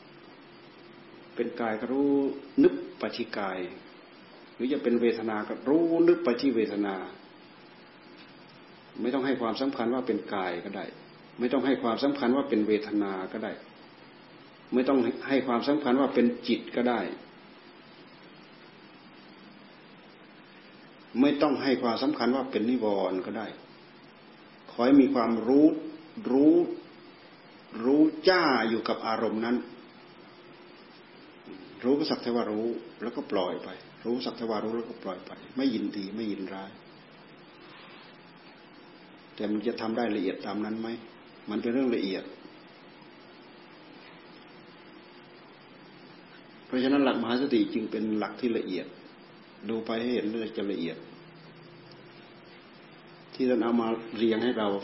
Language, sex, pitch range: Thai, male, 110-135 Hz